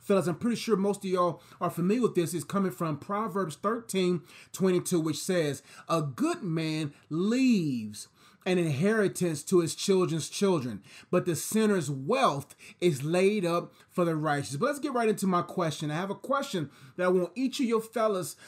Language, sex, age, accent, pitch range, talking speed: English, male, 30-49, American, 150-195 Hz, 180 wpm